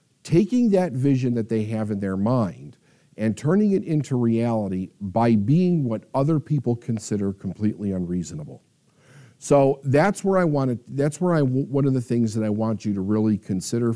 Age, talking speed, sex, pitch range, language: 50-69, 175 wpm, male, 100-135 Hz, English